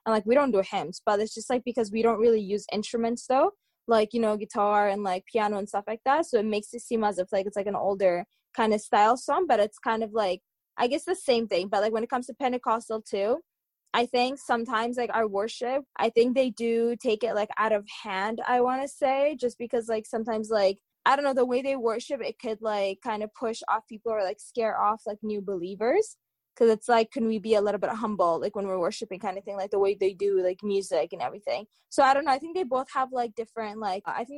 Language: English